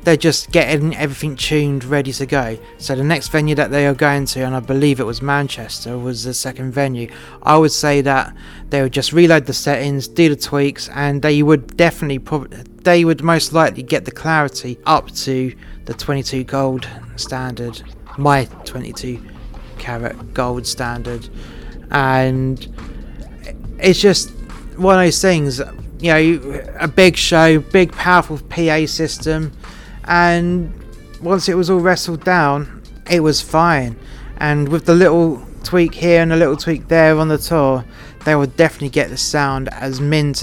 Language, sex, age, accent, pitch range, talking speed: English, male, 30-49, British, 130-155 Hz, 165 wpm